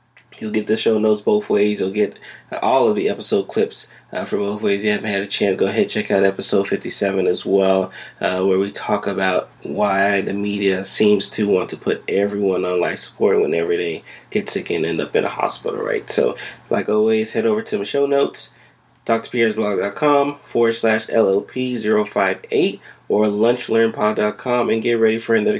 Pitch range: 100-125 Hz